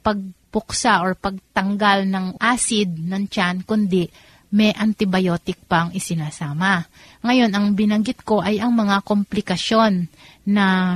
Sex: female